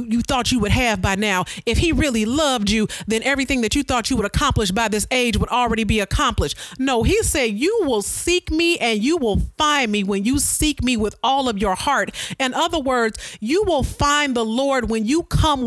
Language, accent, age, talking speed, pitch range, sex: English, American, 40-59, 225 wpm, 205-285 Hz, female